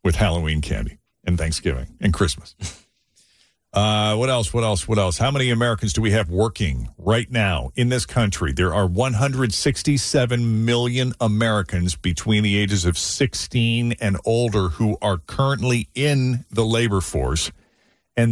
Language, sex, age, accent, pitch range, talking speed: English, male, 50-69, American, 90-115 Hz, 150 wpm